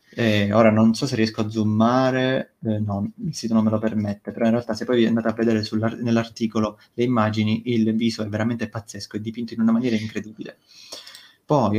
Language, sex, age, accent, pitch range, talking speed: Italian, male, 20-39, native, 110-120 Hz, 200 wpm